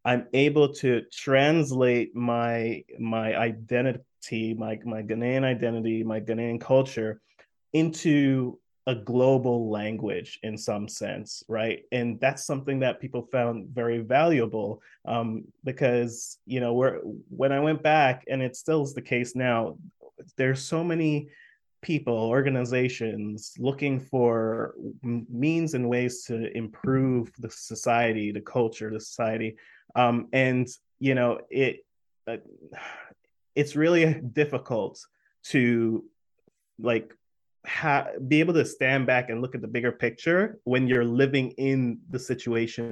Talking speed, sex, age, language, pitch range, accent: 130 wpm, male, 30-49, English, 115-135 Hz, American